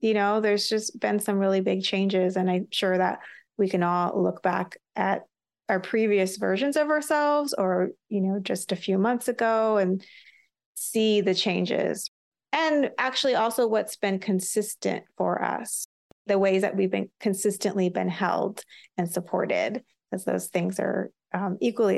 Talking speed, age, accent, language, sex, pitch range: 165 wpm, 30-49, American, English, female, 195-235 Hz